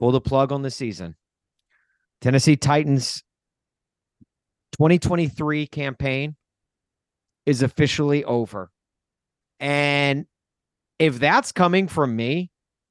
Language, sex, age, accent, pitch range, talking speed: English, male, 40-59, American, 130-170 Hz, 90 wpm